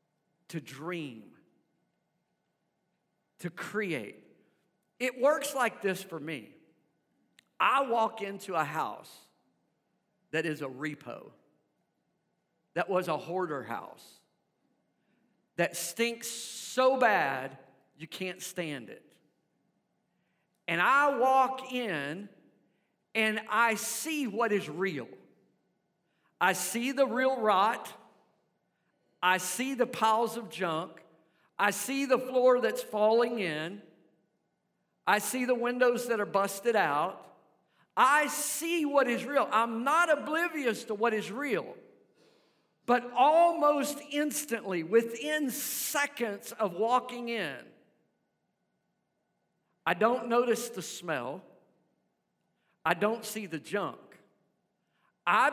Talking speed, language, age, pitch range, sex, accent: 105 wpm, English, 50-69, 180-250 Hz, male, American